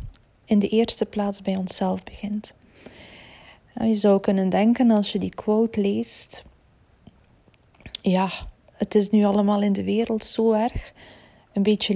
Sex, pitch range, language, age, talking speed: female, 195-220 Hz, Dutch, 40-59, 140 wpm